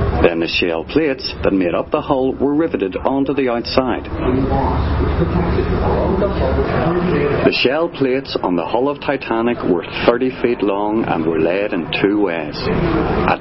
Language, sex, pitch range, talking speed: English, male, 110-145 Hz, 150 wpm